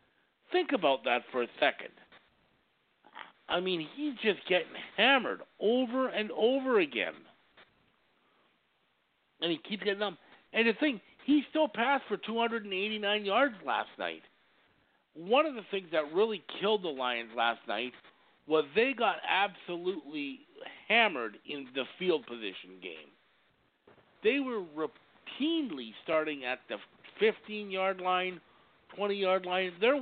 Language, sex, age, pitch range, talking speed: English, male, 50-69, 165-230 Hz, 130 wpm